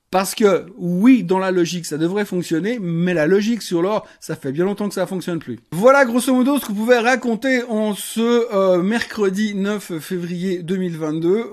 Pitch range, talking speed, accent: 165-210 Hz, 200 wpm, French